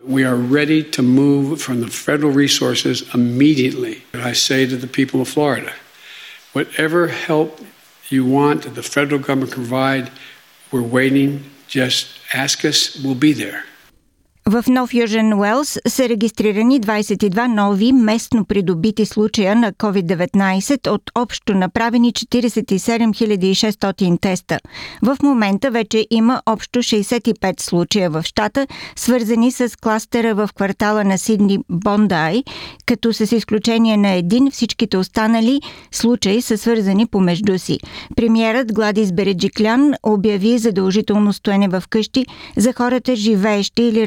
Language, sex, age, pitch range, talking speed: Bulgarian, male, 60-79, 185-230 Hz, 130 wpm